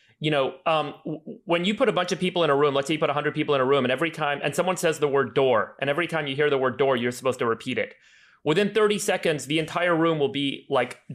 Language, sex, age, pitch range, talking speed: English, male, 30-49, 135-165 Hz, 285 wpm